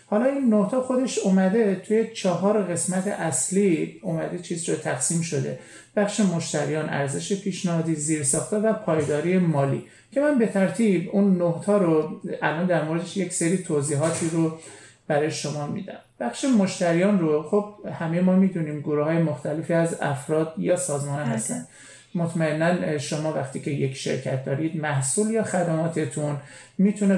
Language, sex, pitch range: Persian, male, 150-195 Hz